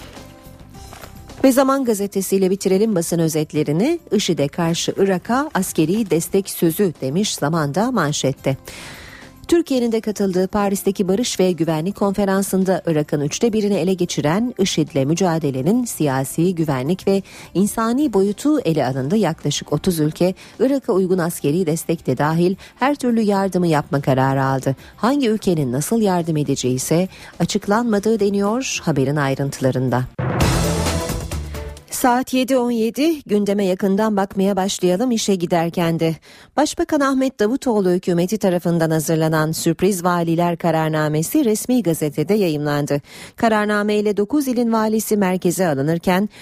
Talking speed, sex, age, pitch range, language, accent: 115 wpm, female, 40-59, 155-210 Hz, Turkish, native